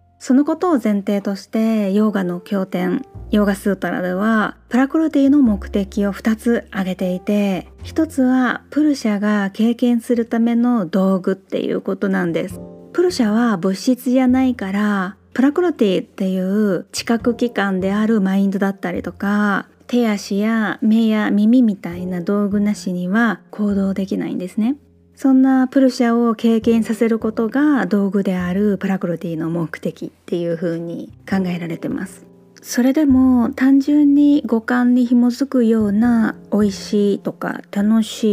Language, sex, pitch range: Japanese, female, 195-240 Hz